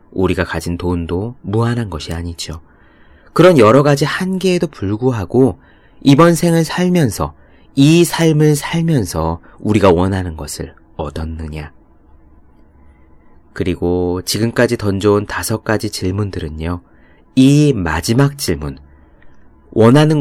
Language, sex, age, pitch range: Korean, male, 30-49, 80-115 Hz